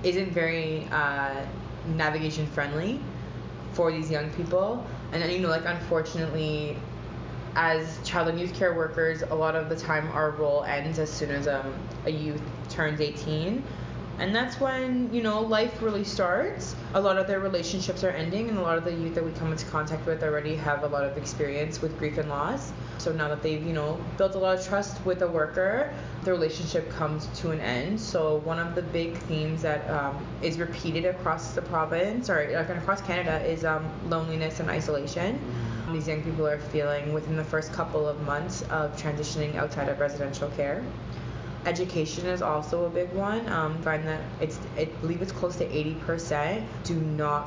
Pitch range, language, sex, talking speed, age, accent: 150-175 Hz, English, female, 185 wpm, 20-39, American